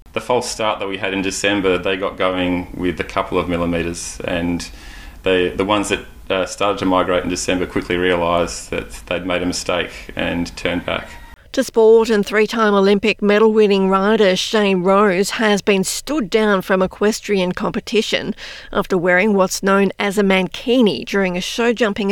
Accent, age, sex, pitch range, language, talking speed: Australian, 40-59, female, 180-220 Hz, English, 170 wpm